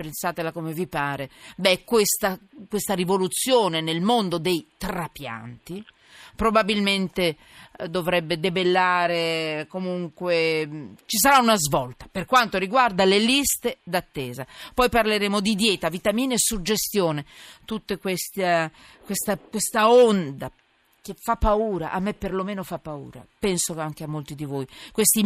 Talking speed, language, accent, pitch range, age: 120 wpm, Italian, native, 150-205 Hz, 40-59